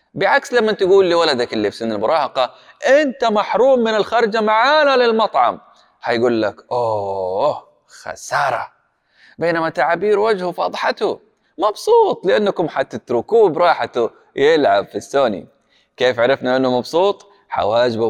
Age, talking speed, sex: 20-39, 115 wpm, male